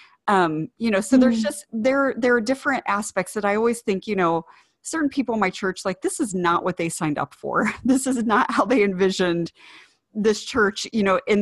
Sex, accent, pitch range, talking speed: female, American, 175-220 Hz, 220 wpm